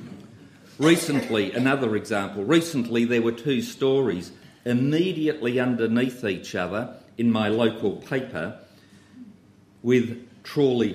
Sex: male